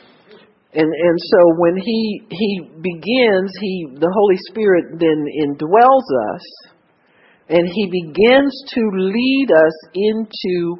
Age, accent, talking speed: 50-69, American, 115 wpm